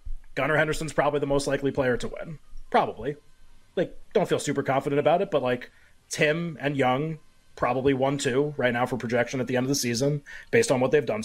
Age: 30-49